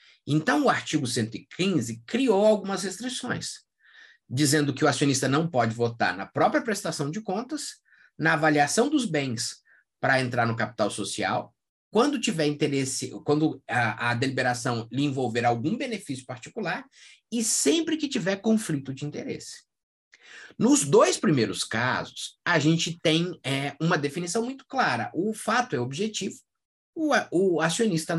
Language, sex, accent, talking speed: Portuguese, male, Brazilian, 135 wpm